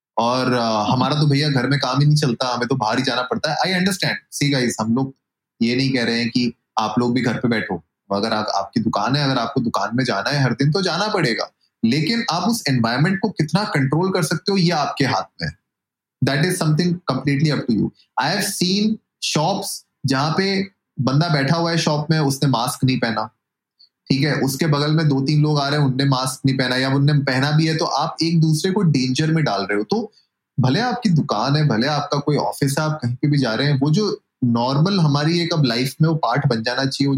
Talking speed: 195 wpm